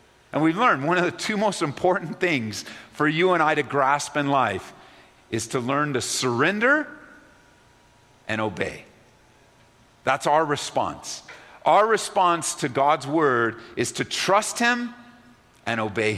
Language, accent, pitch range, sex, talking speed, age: English, American, 135-195 Hz, male, 145 wpm, 50-69